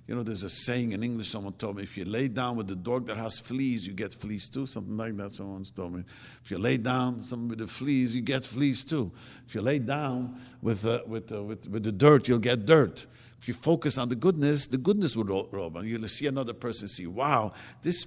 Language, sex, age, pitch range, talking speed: English, male, 50-69, 115-145 Hz, 235 wpm